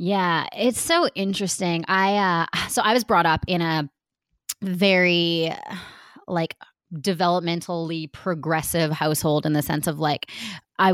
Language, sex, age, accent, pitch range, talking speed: English, female, 20-39, American, 160-190 Hz, 130 wpm